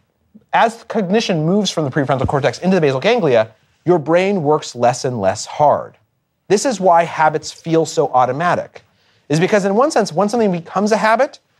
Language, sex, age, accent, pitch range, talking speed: English, male, 30-49, American, 130-195 Hz, 180 wpm